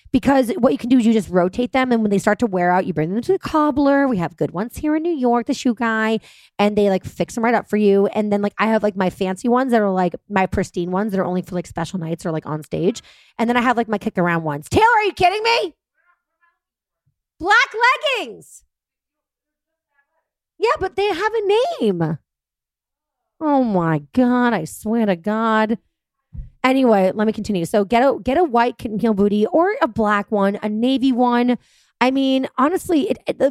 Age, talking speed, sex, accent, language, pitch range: 30-49, 220 wpm, female, American, English, 195-270 Hz